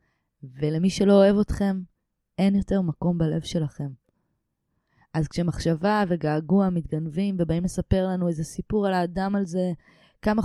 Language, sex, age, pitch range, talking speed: Hebrew, female, 20-39, 155-200 Hz, 130 wpm